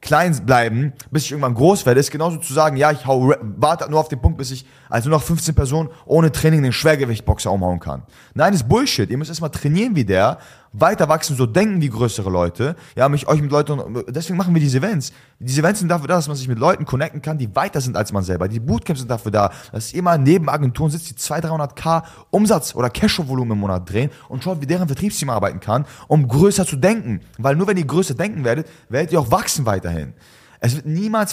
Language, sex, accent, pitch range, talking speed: German, male, German, 125-165 Hz, 240 wpm